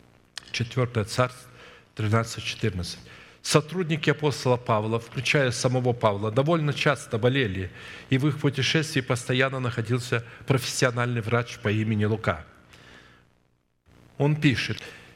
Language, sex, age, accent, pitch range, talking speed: Russian, male, 50-69, native, 105-125 Hz, 100 wpm